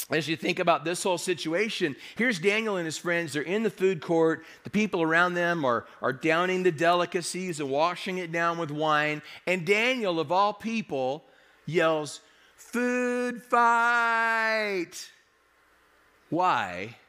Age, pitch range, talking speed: 40-59, 140-185 Hz, 145 wpm